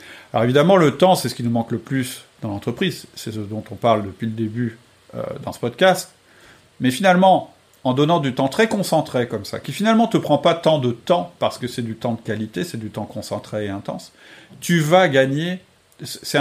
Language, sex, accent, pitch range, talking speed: French, male, French, 110-145 Hz, 225 wpm